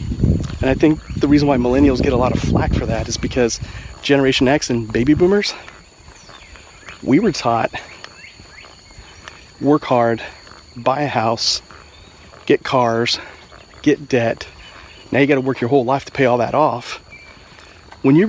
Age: 30-49